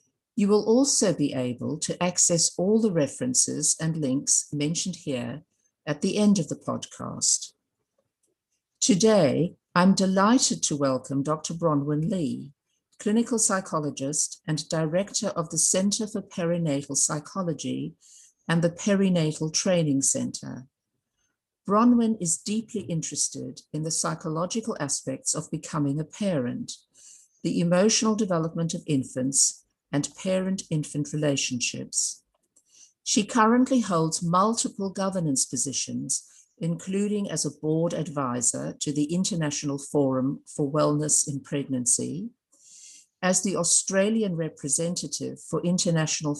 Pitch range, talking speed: 145-195 Hz, 115 wpm